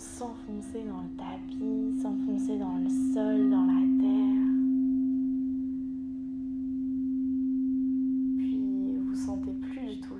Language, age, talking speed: French, 20-39, 100 wpm